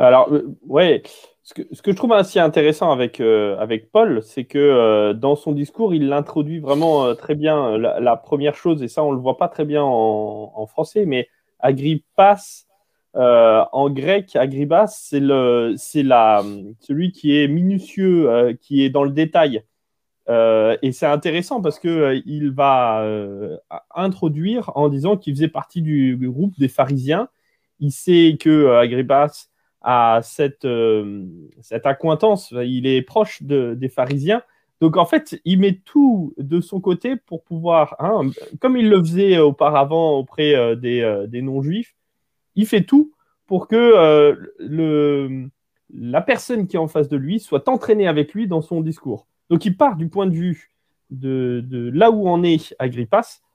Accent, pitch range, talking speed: French, 135-195 Hz, 175 wpm